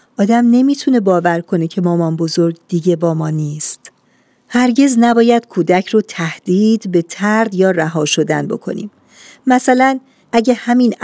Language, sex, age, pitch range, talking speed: Persian, female, 50-69, 170-225 Hz, 135 wpm